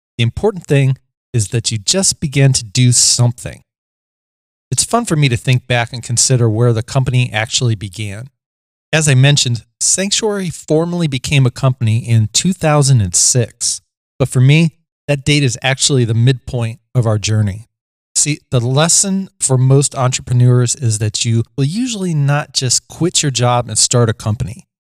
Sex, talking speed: male, 160 wpm